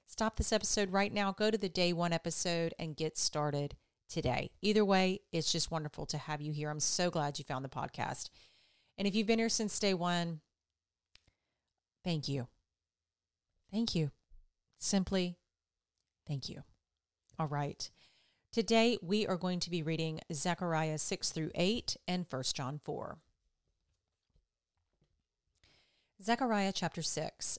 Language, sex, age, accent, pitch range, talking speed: English, female, 40-59, American, 150-195 Hz, 145 wpm